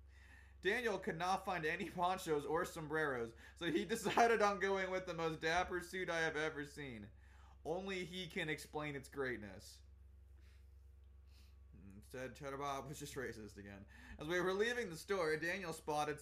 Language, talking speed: English, 155 wpm